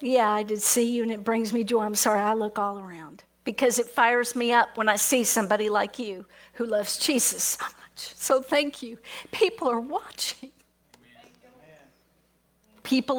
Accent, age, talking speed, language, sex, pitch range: American, 50-69, 175 wpm, English, female, 225-310 Hz